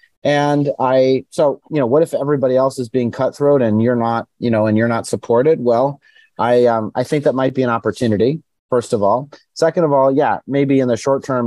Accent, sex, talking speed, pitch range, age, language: American, male, 225 wpm, 110-140 Hz, 30-49, English